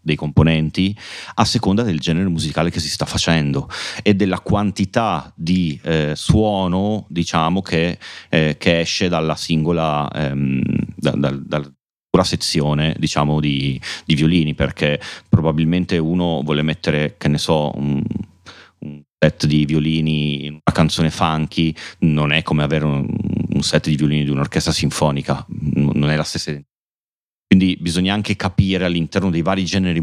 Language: Italian